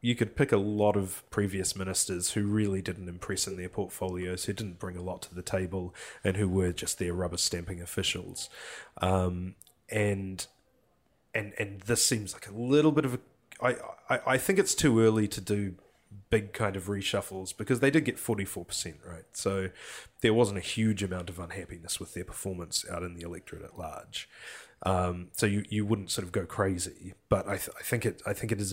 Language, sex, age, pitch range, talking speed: English, male, 20-39, 90-110 Hz, 205 wpm